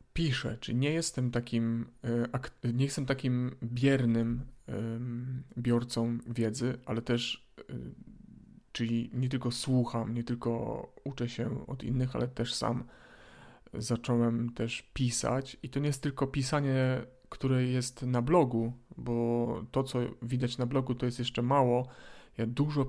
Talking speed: 135 wpm